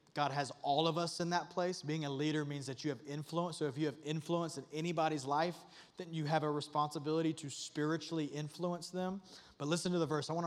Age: 30-49